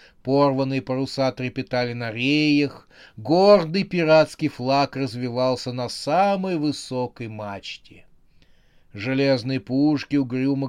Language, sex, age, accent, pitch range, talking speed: Russian, male, 30-49, native, 120-150 Hz, 90 wpm